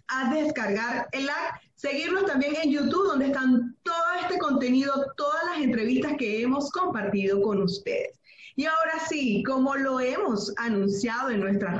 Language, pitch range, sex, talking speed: Spanish, 210-295 Hz, female, 155 wpm